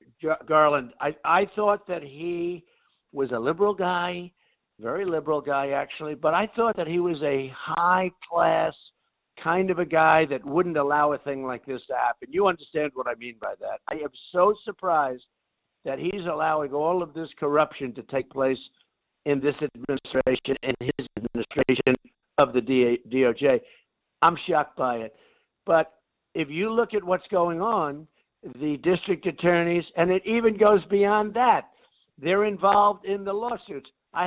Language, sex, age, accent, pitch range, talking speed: English, male, 60-79, American, 145-190 Hz, 165 wpm